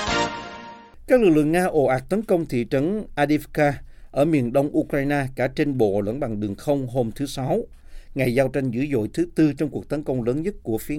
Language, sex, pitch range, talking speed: Vietnamese, male, 115-150 Hz, 220 wpm